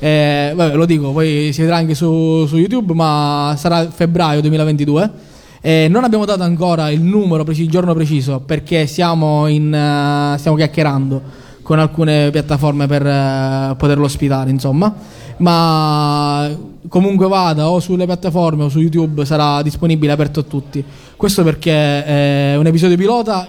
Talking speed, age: 150 wpm, 20-39